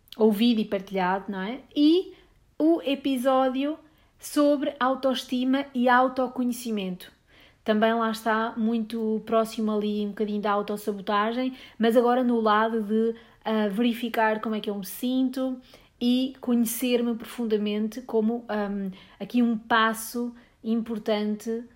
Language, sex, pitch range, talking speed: English, female, 220-265 Hz, 115 wpm